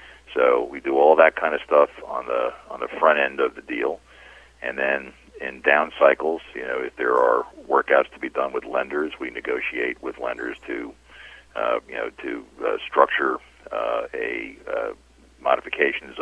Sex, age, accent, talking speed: male, 50-69, American, 180 wpm